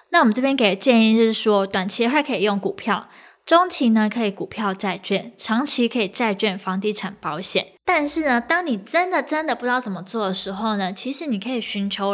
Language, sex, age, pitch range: Chinese, female, 10-29, 195-245 Hz